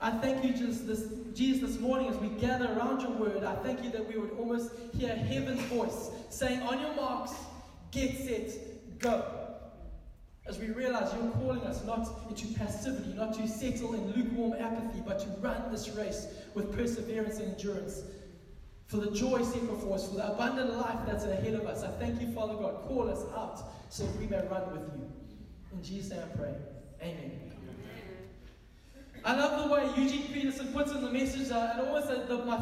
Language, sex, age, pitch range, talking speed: English, male, 20-39, 220-265 Hz, 190 wpm